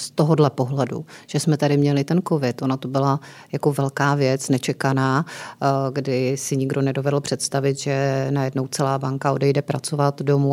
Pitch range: 140-160 Hz